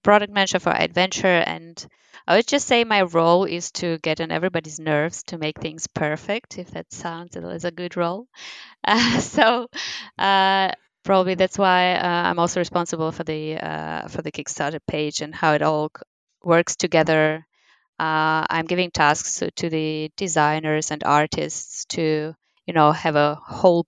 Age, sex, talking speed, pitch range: 20-39, female, 165 wpm, 155-180 Hz